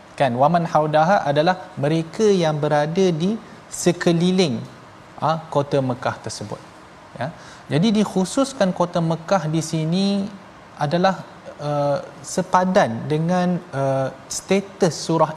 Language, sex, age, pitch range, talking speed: Malayalam, male, 20-39, 160-195 Hz, 105 wpm